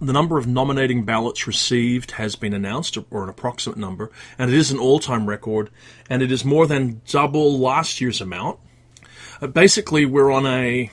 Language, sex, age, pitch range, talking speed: English, male, 30-49, 110-135 Hz, 175 wpm